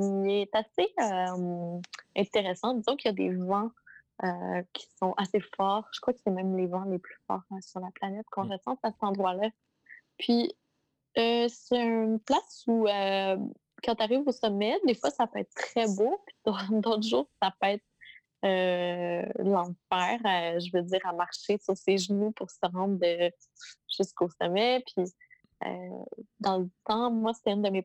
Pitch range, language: 180-215 Hz, French